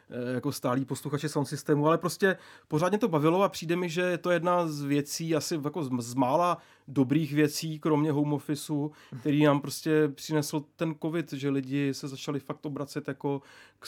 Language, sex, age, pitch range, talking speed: Czech, male, 30-49, 135-150 Hz, 180 wpm